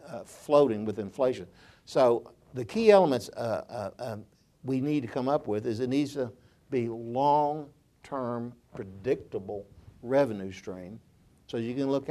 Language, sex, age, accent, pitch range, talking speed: English, male, 60-79, American, 115-150 Hz, 150 wpm